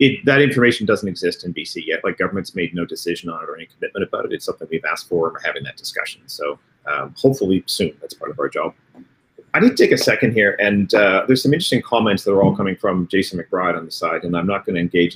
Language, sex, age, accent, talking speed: English, male, 30-49, American, 265 wpm